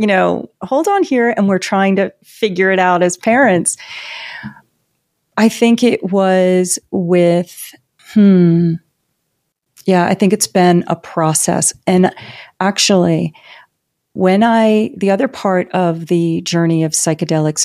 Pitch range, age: 155-190 Hz, 40-59